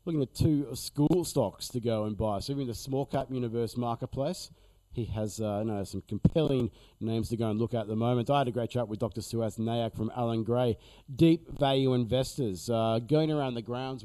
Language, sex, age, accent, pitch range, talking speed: English, male, 40-59, Australian, 110-135 Hz, 220 wpm